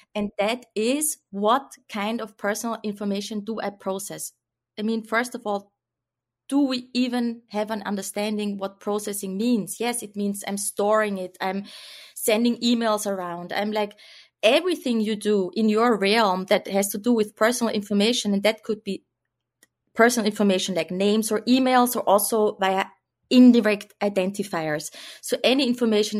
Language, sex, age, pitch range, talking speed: English, female, 20-39, 195-230 Hz, 155 wpm